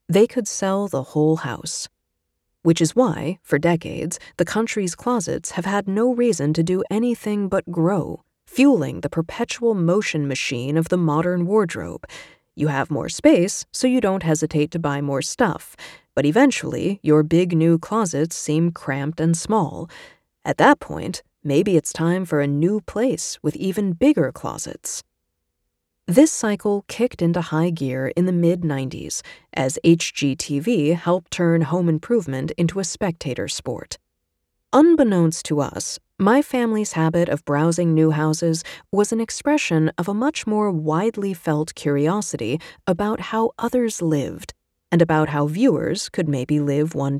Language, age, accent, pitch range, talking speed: English, 30-49, American, 150-205 Hz, 150 wpm